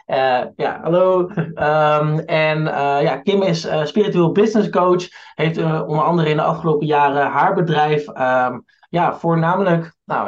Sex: male